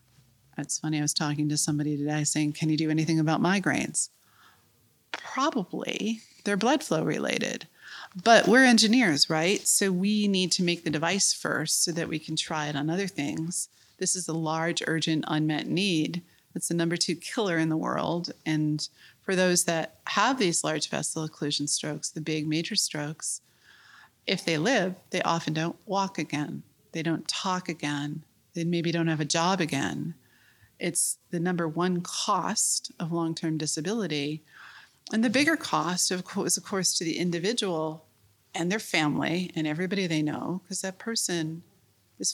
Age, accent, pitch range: 30-49, American, 150-180 Hz